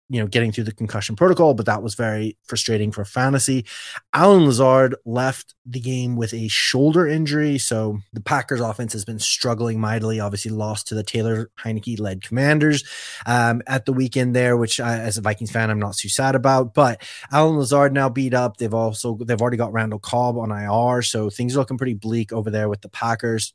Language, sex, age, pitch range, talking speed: English, male, 20-39, 110-130 Hz, 205 wpm